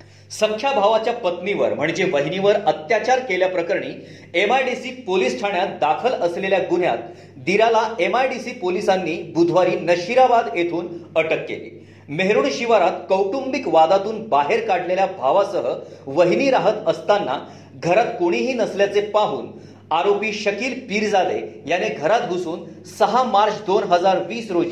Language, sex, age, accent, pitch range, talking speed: Marathi, male, 40-59, native, 170-220 Hz, 105 wpm